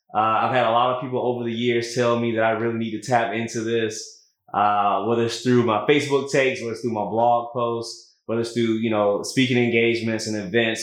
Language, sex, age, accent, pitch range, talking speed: English, male, 20-39, American, 110-130 Hz, 235 wpm